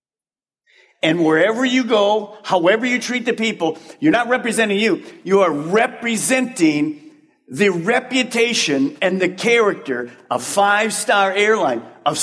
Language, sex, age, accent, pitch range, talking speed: English, male, 50-69, American, 160-245 Hz, 125 wpm